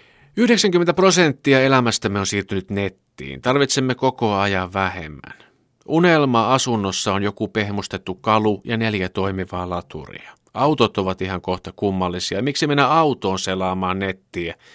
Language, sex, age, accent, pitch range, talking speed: Finnish, male, 50-69, native, 95-130 Hz, 120 wpm